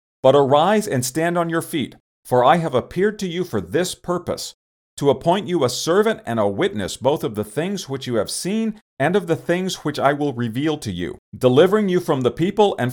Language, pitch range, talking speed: English, 120-175 Hz, 225 wpm